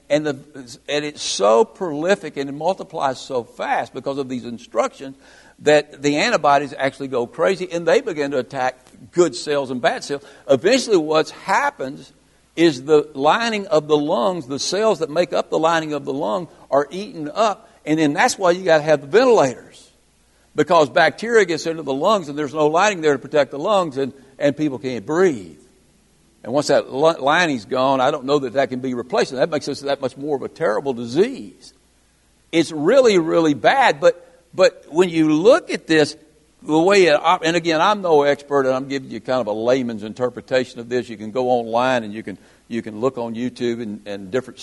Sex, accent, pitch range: male, American, 125-170 Hz